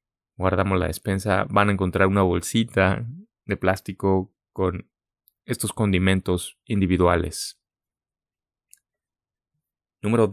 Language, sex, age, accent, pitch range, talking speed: English, male, 20-39, Mexican, 95-110 Hz, 85 wpm